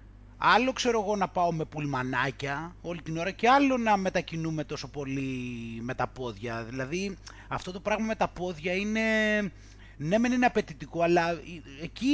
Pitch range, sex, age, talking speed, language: 125-185 Hz, male, 30-49, 165 wpm, Greek